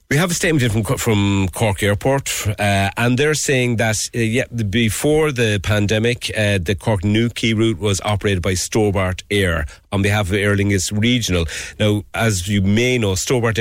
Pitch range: 90-115 Hz